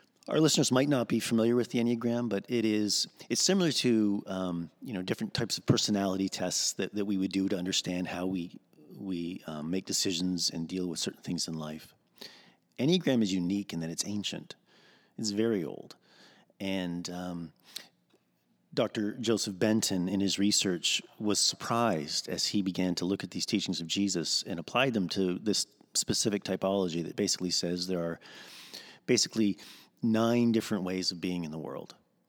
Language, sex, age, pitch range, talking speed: English, male, 30-49, 90-110 Hz, 175 wpm